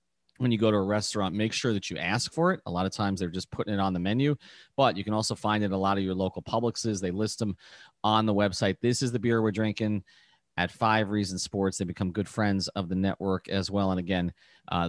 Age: 30-49